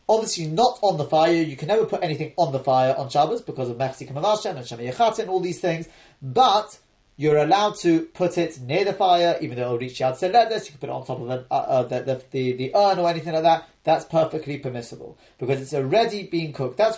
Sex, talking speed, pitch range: male, 240 wpm, 130-175 Hz